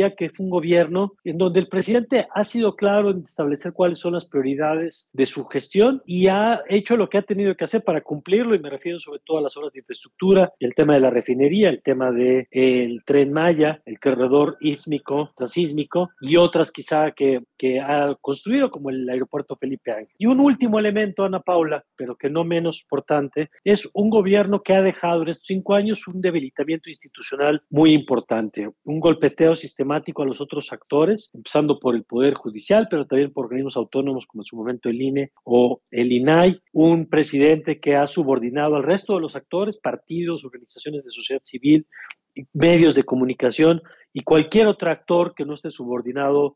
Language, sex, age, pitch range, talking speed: Spanish, male, 40-59, 140-190 Hz, 190 wpm